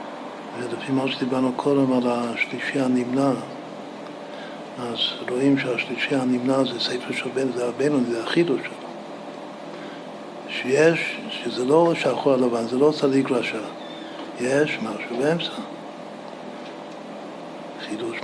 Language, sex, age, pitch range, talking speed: Hebrew, male, 60-79, 125-135 Hz, 100 wpm